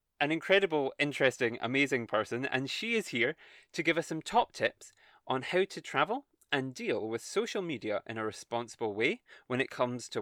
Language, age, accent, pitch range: English, 20-39, British, 115-165 Hz